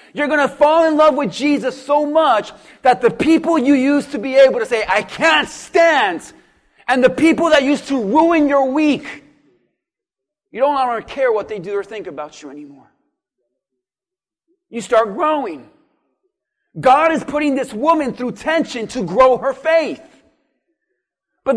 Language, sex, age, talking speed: English, male, 40-59, 165 wpm